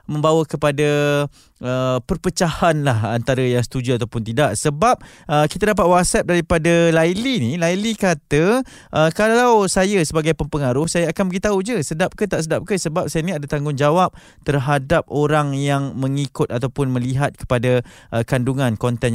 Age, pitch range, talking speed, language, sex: 20-39, 125-170 Hz, 155 wpm, Malay, male